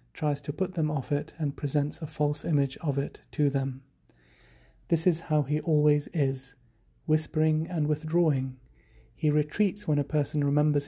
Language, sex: English, male